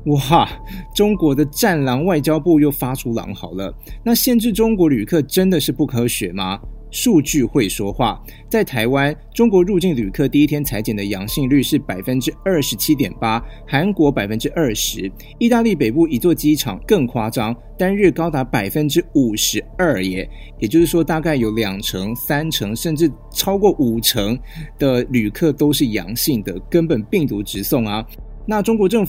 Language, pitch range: Chinese, 110-160 Hz